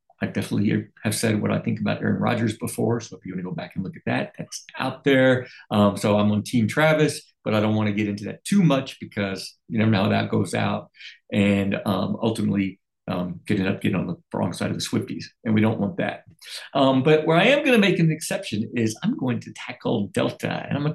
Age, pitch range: 50-69, 110-145 Hz